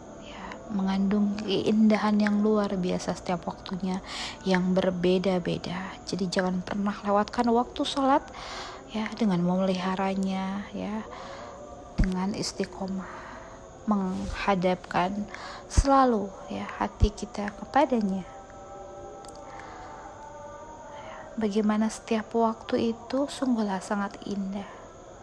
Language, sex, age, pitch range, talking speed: Indonesian, female, 20-39, 190-235 Hz, 80 wpm